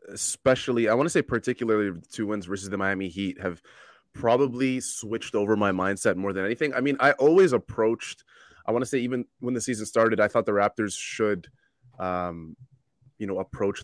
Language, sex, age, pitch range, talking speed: English, male, 20-39, 100-125 Hz, 190 wpm